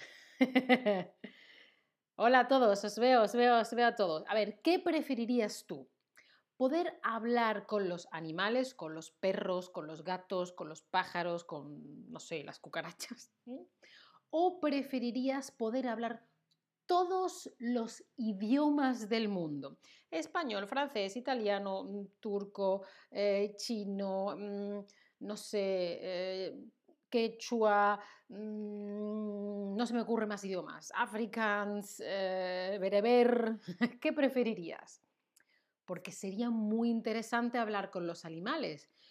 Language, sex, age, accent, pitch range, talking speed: Spanish, female, 30-49, Spanish, 195-245 Hz, 115 wpm